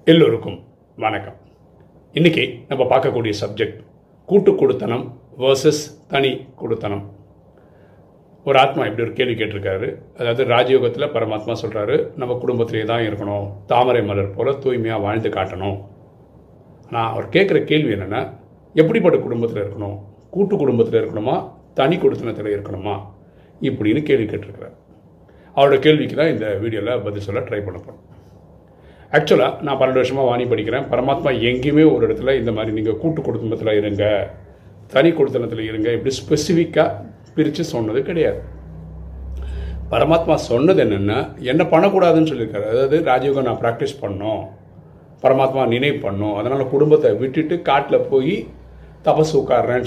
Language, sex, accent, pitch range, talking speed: Tamil, male, native, 105-160 Hz, 125 wpm